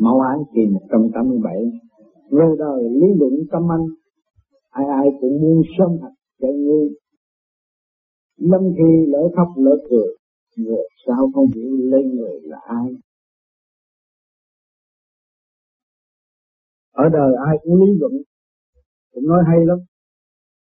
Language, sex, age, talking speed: Vietnamese, male, 50-69, 120 wpm